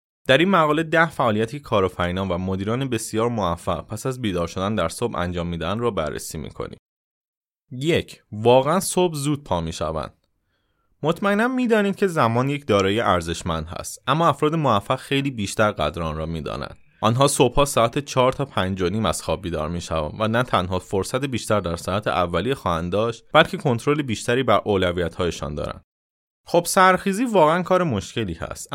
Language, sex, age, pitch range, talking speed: Persian, male, 30-49, 95-140 Hz, 155 wpm